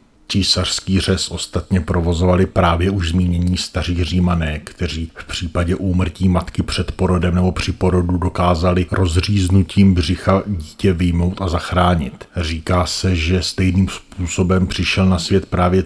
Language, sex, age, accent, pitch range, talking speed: Czech, male, 40-59, native, 85-95 Hz, 130 wpm